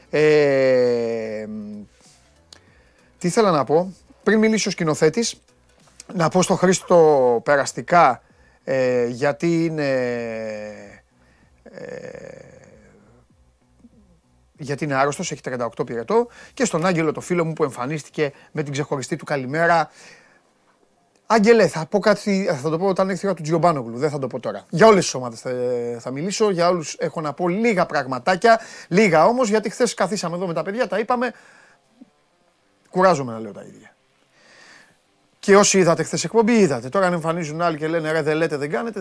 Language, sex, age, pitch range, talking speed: Greek, male, 30-49, 125-190 Hz, 150 wpm